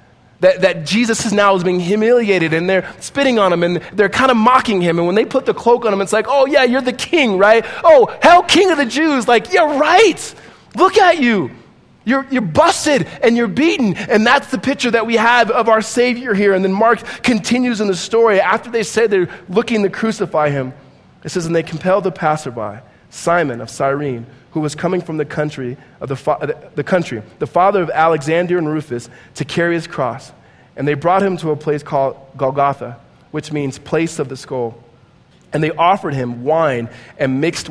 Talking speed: 210 wpm